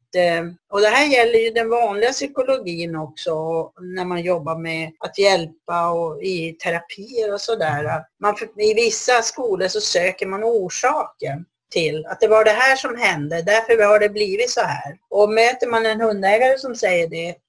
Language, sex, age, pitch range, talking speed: English, female, 40-59, 170-225 Hz, 165 wpm